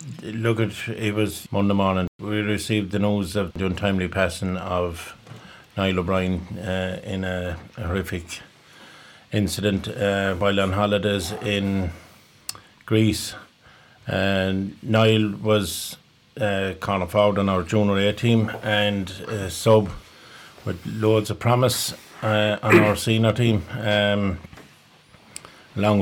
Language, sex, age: English, male, 50-69